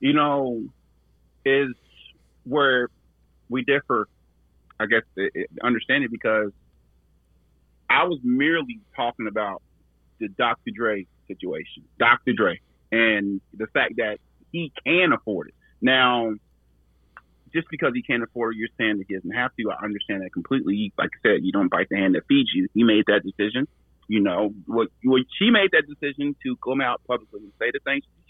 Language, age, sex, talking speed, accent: English, 30-49, male, 170 wpm, American